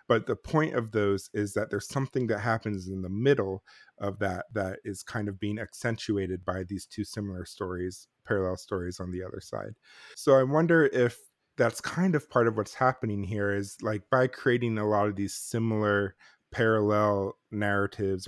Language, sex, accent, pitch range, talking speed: English, male, American, 95-120 Hz, 185 wpm